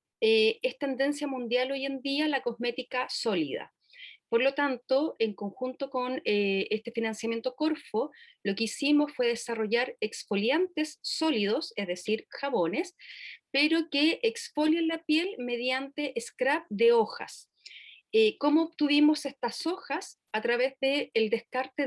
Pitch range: 235-305 Hz